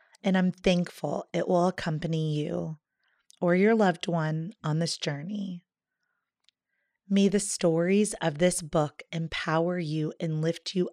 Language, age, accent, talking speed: English, 30-49, American, 135 wpm